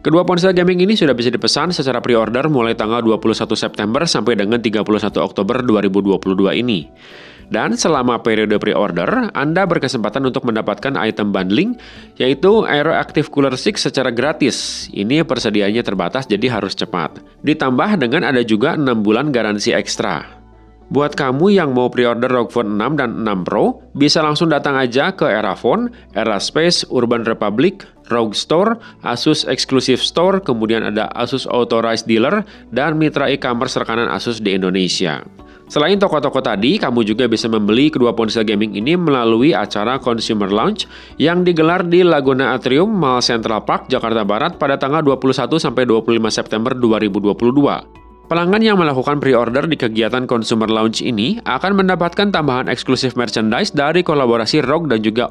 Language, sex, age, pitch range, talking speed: Indonesian, male, 30-49, 110-150 Hz, 150 wpm